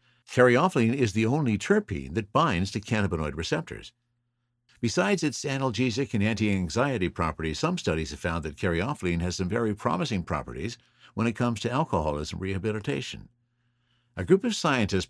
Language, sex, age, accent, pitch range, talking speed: English, male, 60-79, American, 95-120 Hz, 150 wpm